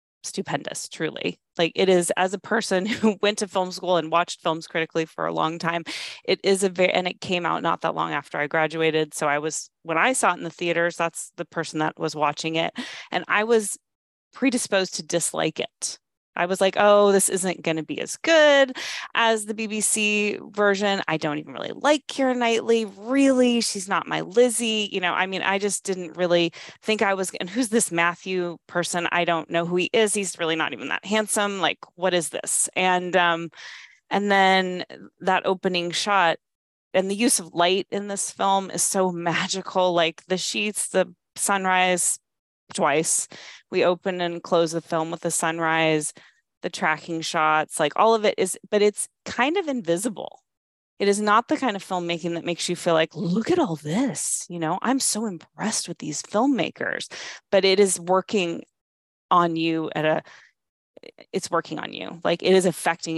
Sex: female